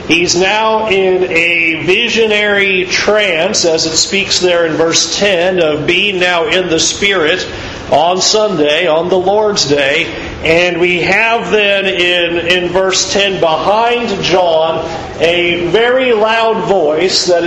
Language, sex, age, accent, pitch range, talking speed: English, male, 40-59, American, 180-225 Hz, 135 wpm